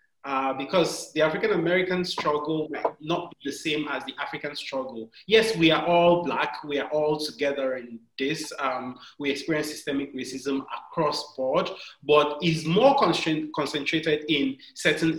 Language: English